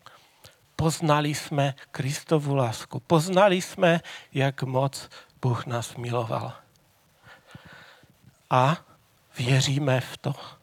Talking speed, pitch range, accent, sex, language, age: 85 wpm, 130-155 Hz, native, male, Czech, 40-59